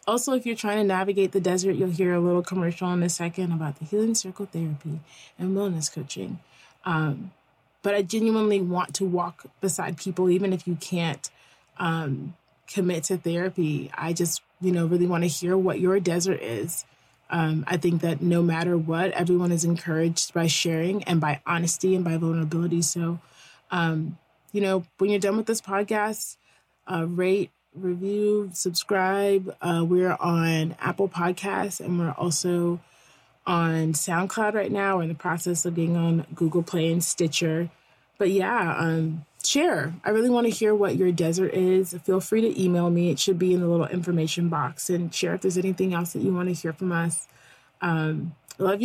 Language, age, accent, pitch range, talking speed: English, 20-39, American, 165-190 Hz, 185 wpm